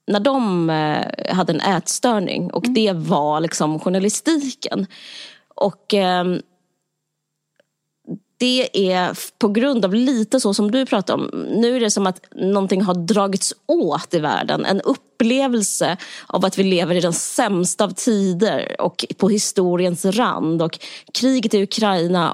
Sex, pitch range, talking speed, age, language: female, 160-220 Hz, 140 wpm, 20-39, Swedish